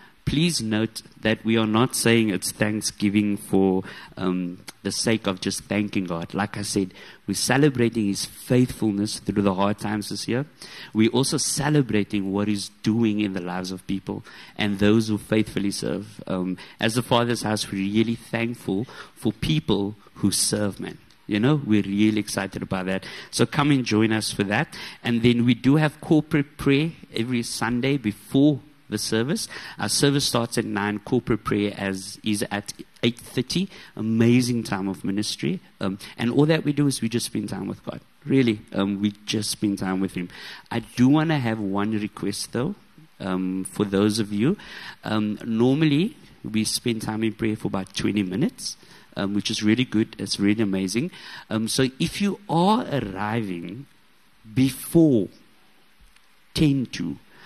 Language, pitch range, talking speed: English, 100-125 Hz, 170 wpm